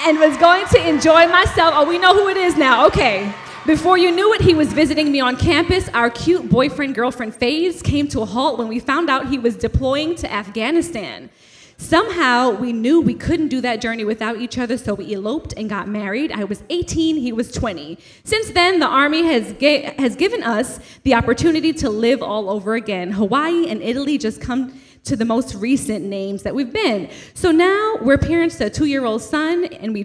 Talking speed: 210 wpm